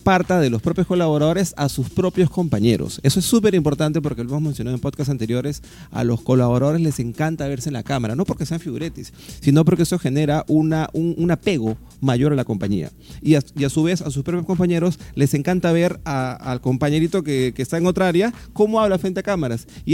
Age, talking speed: 30-49, 210 wpm